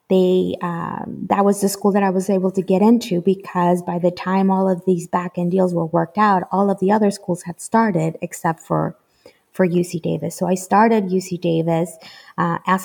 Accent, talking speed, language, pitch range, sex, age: American, 205 wpm, English, 185-220 Hz, female, 20-39